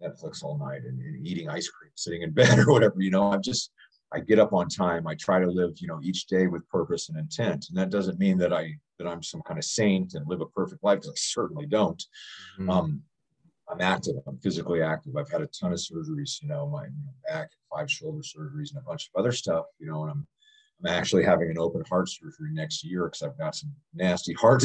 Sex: male